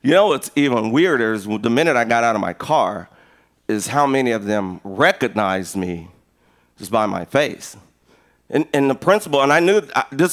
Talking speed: 200 wpm